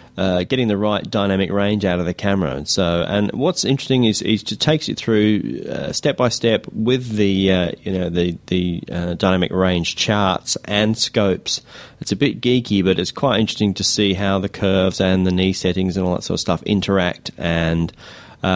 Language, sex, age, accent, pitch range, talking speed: English, male, 30-49, Australian, 90-105 Hz, 210 wpm